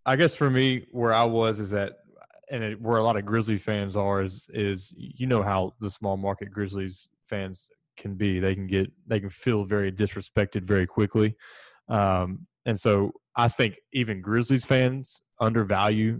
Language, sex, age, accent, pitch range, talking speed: English, male, 20-39, American, 100-115 Hz, 180 wpm